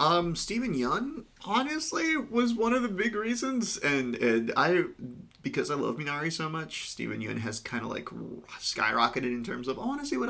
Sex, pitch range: male, 120-155 Hz